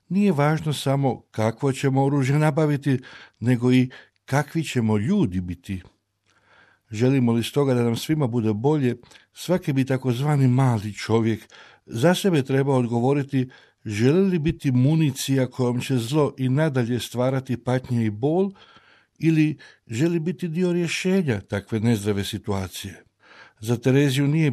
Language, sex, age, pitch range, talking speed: Croatian, male, 60-79, 110-150 Hz, 130 wpm